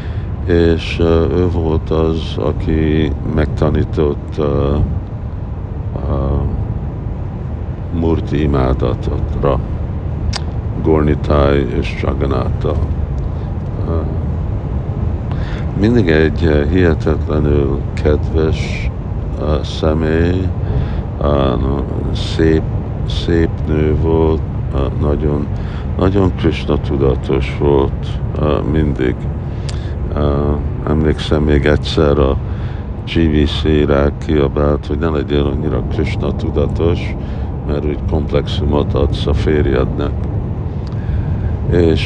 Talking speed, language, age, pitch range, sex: 80 wpm, Hungarian, 50-69, 75-95 Hz, male